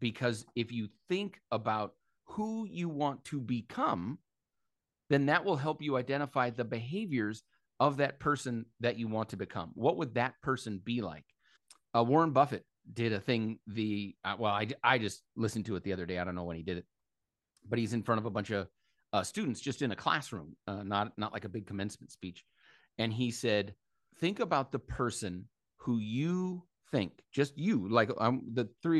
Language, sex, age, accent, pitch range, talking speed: English, male, 30-49, American, 105-135 Hz, 195 wpm